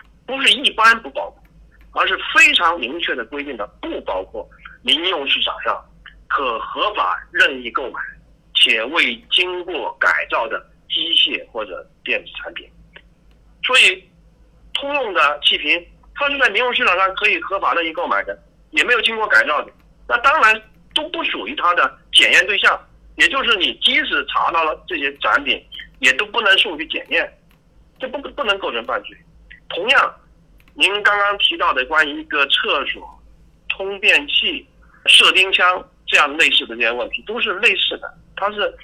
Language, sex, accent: Chinese, male, native